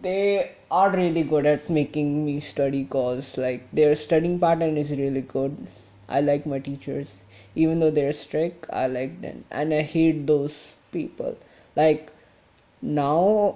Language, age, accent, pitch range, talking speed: English, 20-39, Indian, 135-160 Hz, 155 wpm